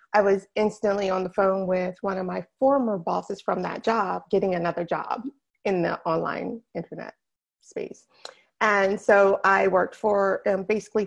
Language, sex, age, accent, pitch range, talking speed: English, female, 30-49, American, 180-215 Hz, 165 wpm